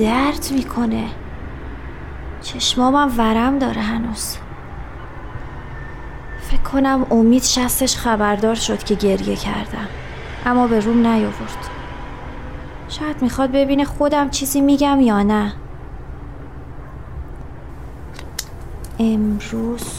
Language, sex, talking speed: Persian, female, 85 wpm